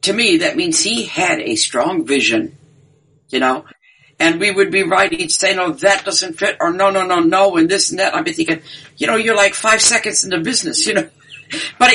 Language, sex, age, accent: English, female, 60-79, American